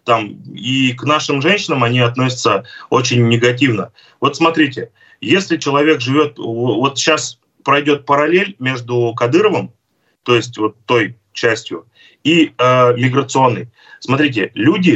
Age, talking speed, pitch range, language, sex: 20-39, 115 wpm, 115-150 Hz, Russian, male